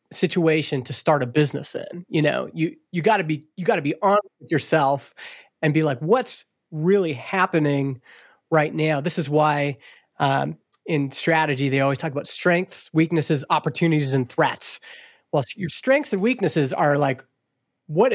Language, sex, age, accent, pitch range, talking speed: English, male, 30-49, American, 145-185 Hz, 170 wpm